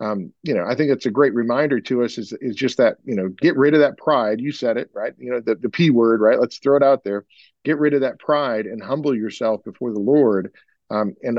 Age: 40-59